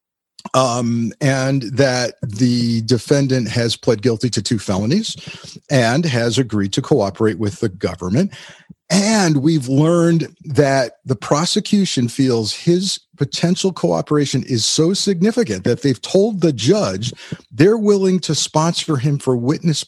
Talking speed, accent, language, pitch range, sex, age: 135 wpm, American, English, 115-165 Hz, male, 40-59